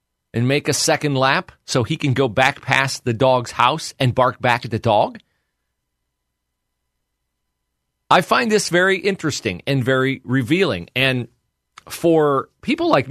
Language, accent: English, American